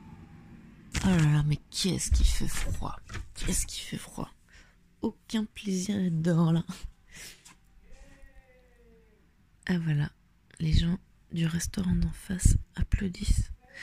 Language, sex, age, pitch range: French, female, 30-49, 135-170 Hz